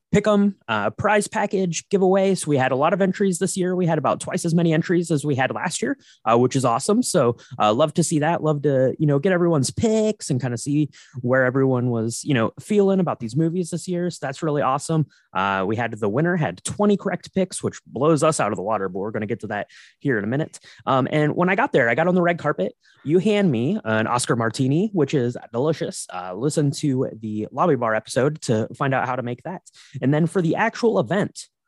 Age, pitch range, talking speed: 20-39, 120-185 Hz, 250 wpm